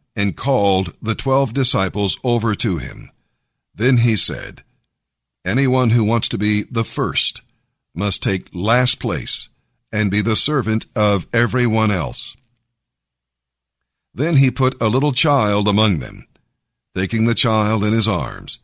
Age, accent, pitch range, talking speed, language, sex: 50-69, American, 100-125 Hz, 140 wpm, English, male